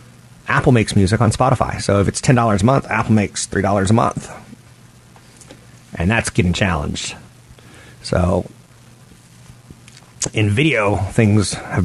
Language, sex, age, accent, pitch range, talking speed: English, male, 30-49, American, 95-120 Hz, 125 wpm